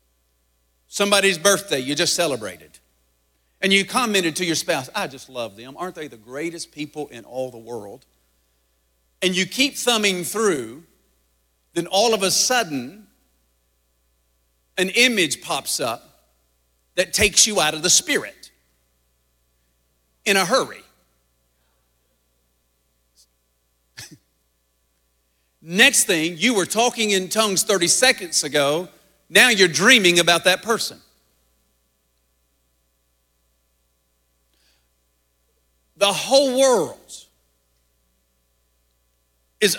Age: 50-69